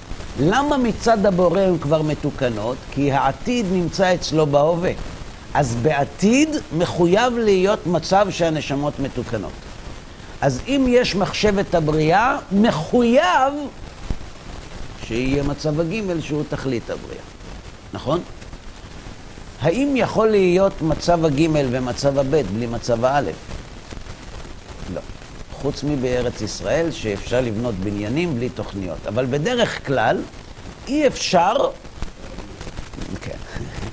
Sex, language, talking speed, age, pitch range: male, Hebrew, 95 wpm, 60-79, 125-200 Hz